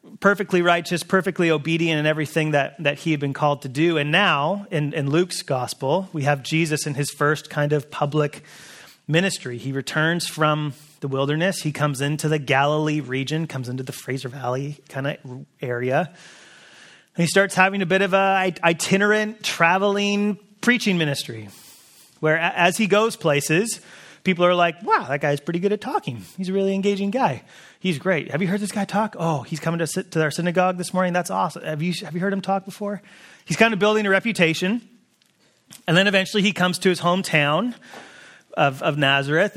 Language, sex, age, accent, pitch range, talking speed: English, male, 30-49, American, 150-190 Hz, 190 wpm